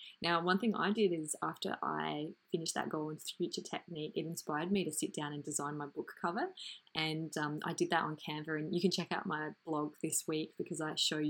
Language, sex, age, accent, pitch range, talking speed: English, female, 20-39, Australian, 155-195 Hz, 235 wpm